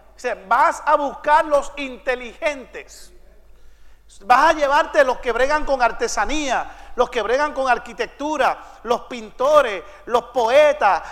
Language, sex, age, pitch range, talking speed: English, male, 40-59, 240-300 Hz, 120 wpm